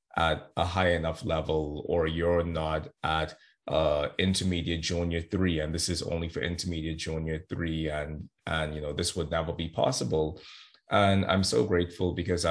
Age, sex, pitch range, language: 30-49, male, 80-95 Hz, English